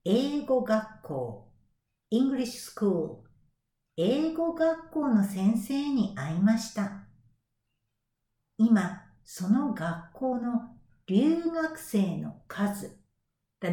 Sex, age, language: female, 60-79, Japanese